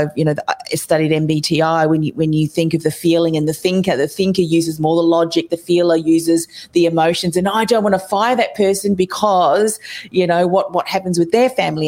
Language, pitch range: English, 160-195 Hz